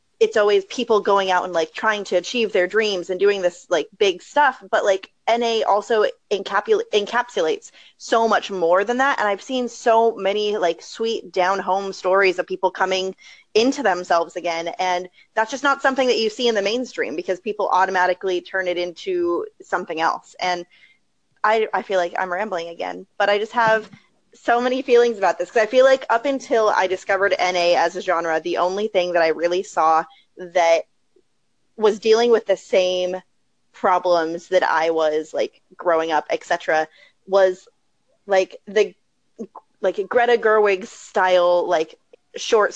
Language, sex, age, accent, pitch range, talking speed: English, female, 20-39, American, 175-225 Hz, 170 wpm